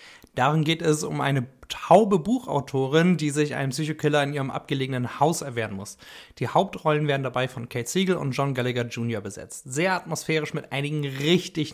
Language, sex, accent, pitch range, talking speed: German, male, German, 135-170 Hz, 175 wpm